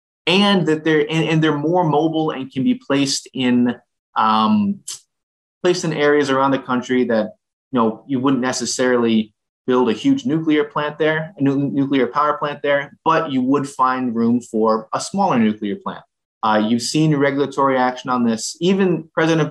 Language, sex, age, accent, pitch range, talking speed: English, male, 20-39, American, 115-155 Hz, 170 wpm